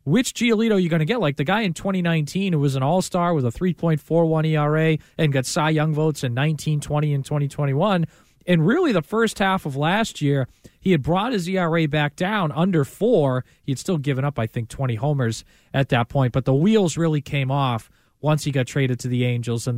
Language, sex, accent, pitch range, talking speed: English, male, American, 135-180 Hz, 220 wpm